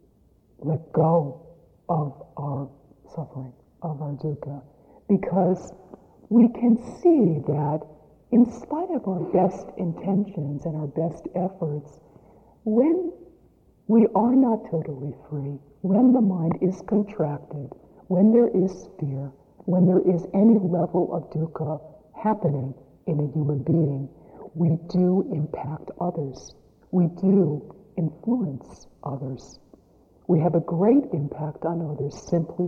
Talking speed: 120 wpm